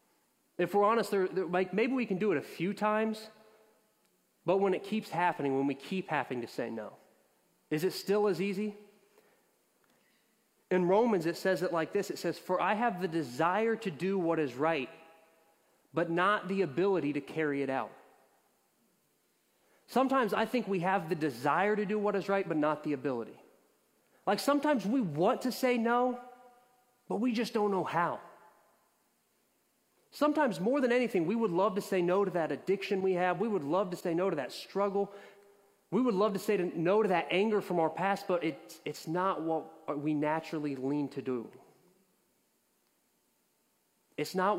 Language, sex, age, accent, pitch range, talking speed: English, male, 30-49, American, 165-205 Hz, 180 wpm